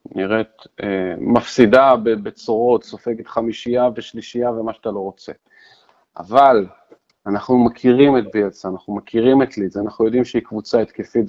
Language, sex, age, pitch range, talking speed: Hebrew, male, 40-59, 100-130 Hz, 135 wpm